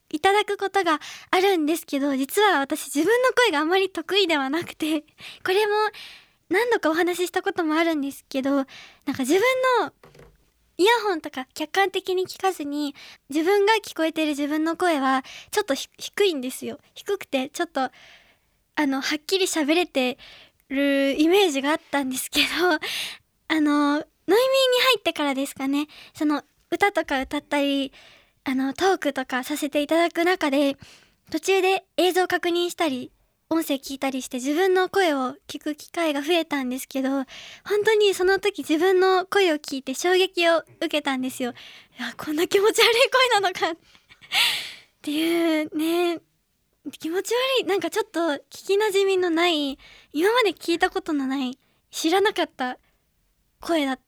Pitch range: 285-380 Hz